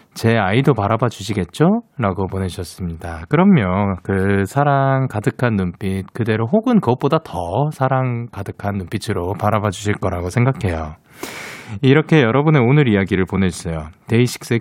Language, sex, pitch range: Korean, male, 100-155 Hz